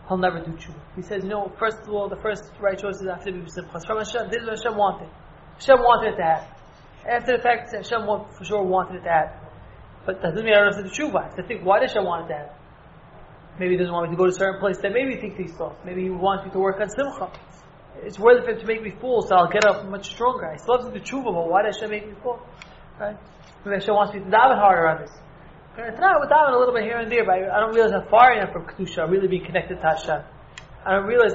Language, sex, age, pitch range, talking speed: English, male, 20-39, 170-225 Hz, 270 wpm